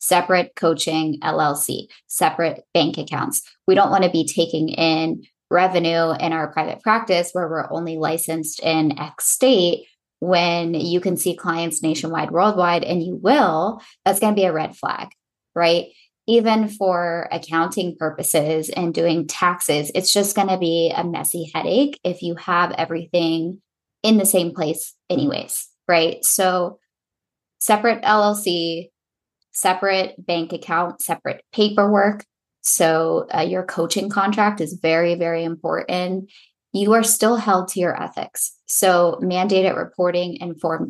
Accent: American